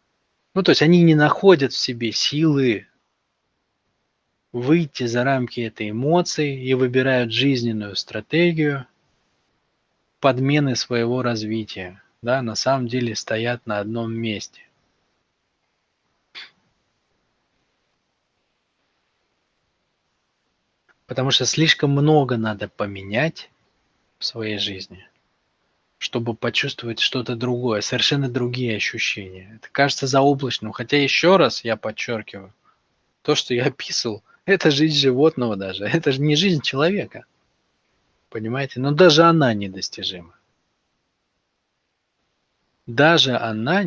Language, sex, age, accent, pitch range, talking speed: Russian, male, 20-39, native, 110-145 Hz, 100 wpm